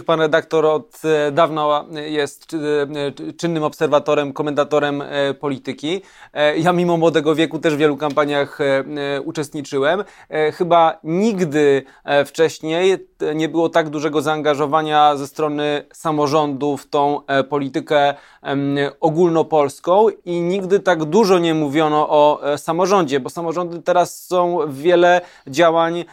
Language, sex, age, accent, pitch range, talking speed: Polish, male, 20-39, native, 145-165 Hz, 110 wpm